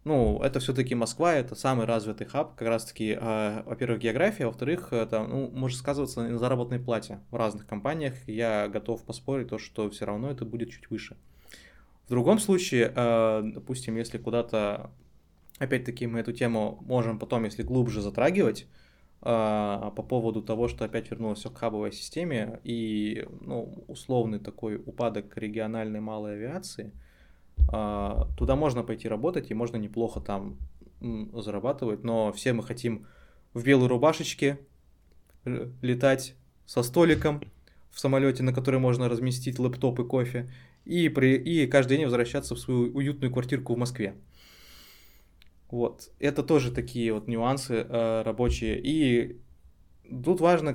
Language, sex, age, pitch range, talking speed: Russian, male, 20-39, 105-130 Hz, 145 wpm